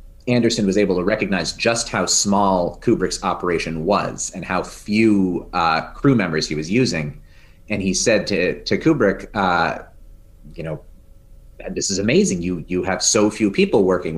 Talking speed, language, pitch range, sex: 165 wpm, English, 85-110 Hz, male